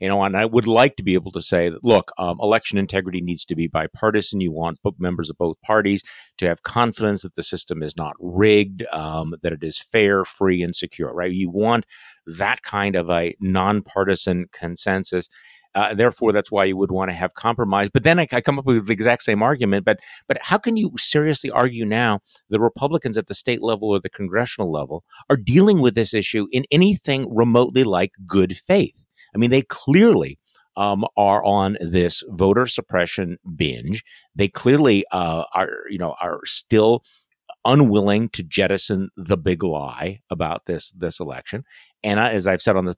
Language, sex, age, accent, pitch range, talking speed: English, male, 50-69, American, 90-115 Hz, 190 wpm